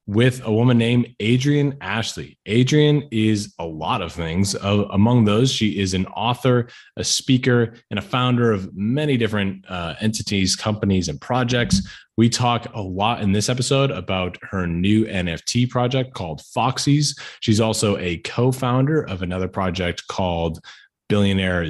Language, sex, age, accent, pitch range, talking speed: English, male, 20-39, American, 90-120 Hz, 150 wpm